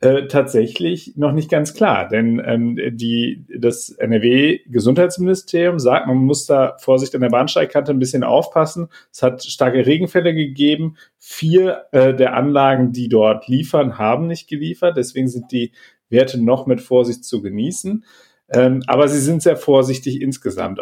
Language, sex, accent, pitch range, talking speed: German, male, German, 115-145 Hz, 155 wpm